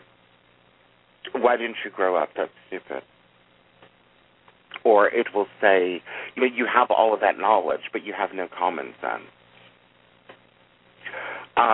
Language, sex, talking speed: English, male, 130 wpm